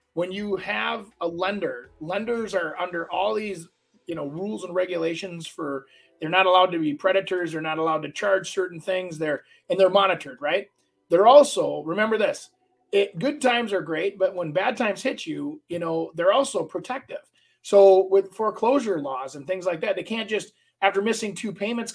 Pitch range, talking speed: 165-210 Hz, 185 wpm